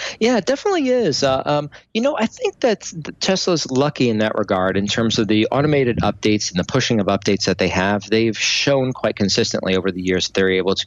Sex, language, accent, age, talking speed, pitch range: male, English, American, 40-59, 225 wpm, 95-115 Hz